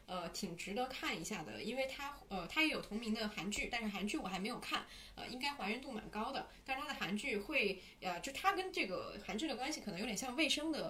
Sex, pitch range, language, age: female, 190-240 Hz, Chinese, 20-39